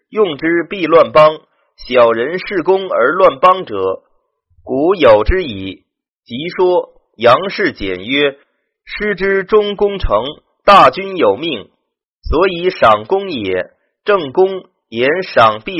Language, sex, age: Chinese, male, 30-49